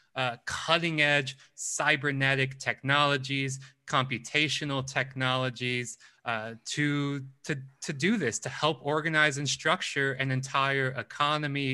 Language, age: English, 20-39